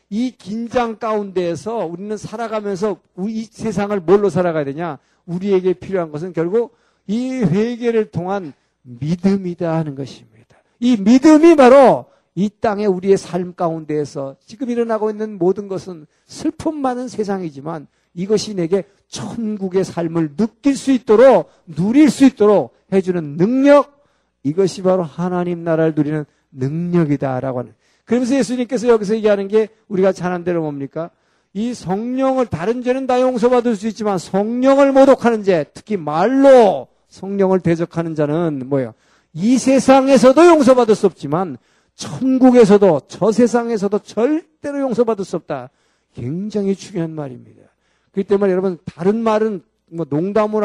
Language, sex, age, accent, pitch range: Korean, male, 50-69, native, 170-230 Hz